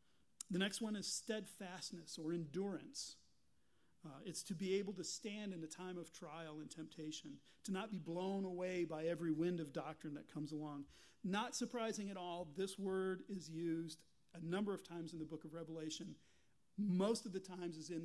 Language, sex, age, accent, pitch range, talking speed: English, male, 40-59, American, 160-185 Hz, 190 wpm